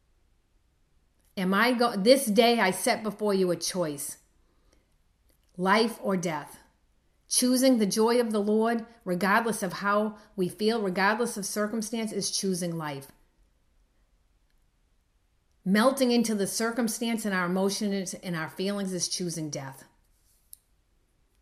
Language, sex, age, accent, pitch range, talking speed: English, female, 40-59, American, 155-210 Hz, 125 wpm